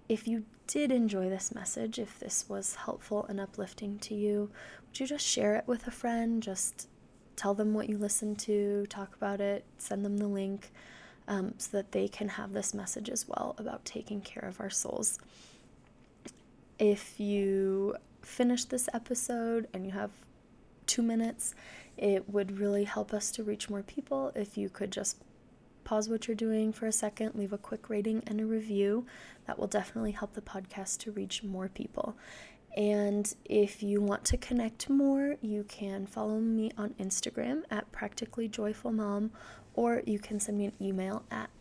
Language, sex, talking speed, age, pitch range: English, female, 180 wpm, 20-39, 200-225 Hz